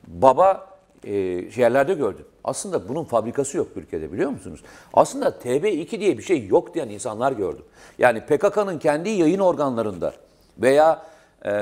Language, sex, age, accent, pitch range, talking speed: Turkish, male, 50-69, native, 130-205 Hz, 140 wpm